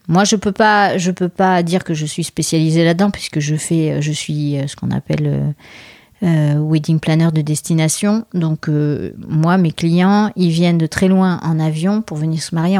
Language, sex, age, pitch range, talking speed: French, female, 30-49, 155-190 Hz, 195 wpm